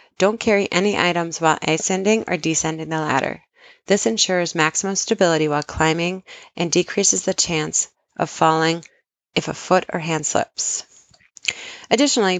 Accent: American